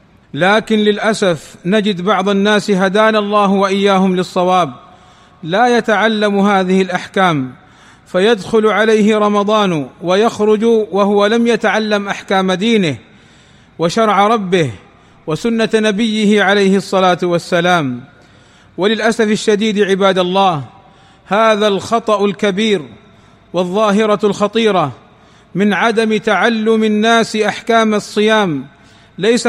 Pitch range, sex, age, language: 185-220 Hz, male, 40-59, Arabic